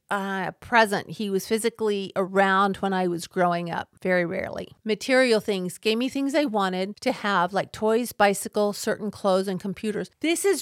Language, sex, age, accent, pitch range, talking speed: English, female, 50-69, American, 195-230 Hz, 175 wpm